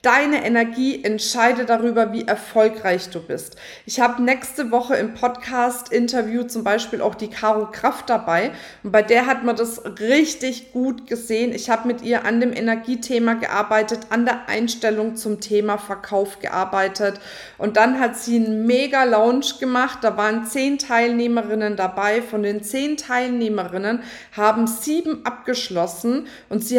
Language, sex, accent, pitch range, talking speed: German, female, German, 210-245 Hz, 150 wpm